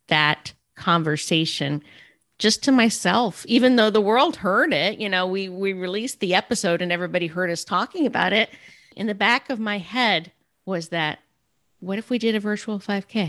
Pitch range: 175-230 Hz